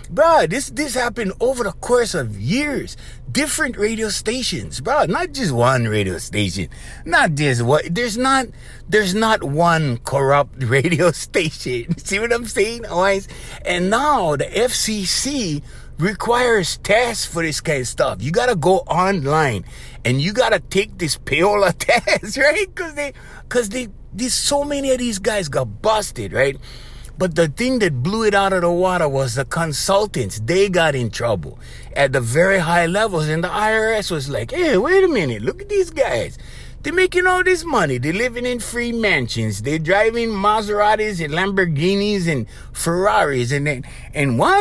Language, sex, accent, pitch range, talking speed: English, male, American, 150-245 Hz, 170 wpm